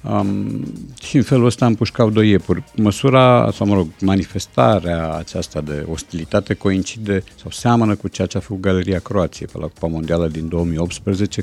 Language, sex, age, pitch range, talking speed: Romanian, male, 50-69, 85-110 Hz, 170 wpm